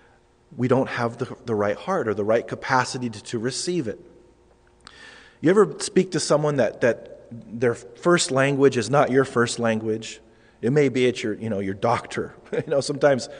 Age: 40-59